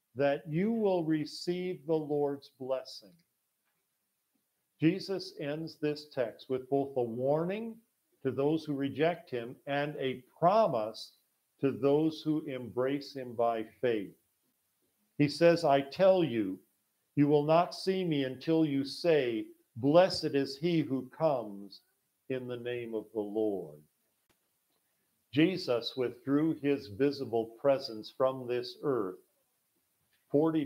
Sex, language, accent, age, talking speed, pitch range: male, English, American, 50-69, 125 wpm, 125-160 Hz